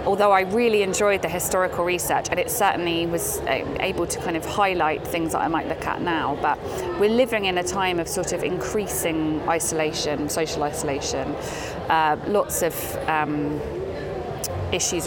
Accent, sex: British, female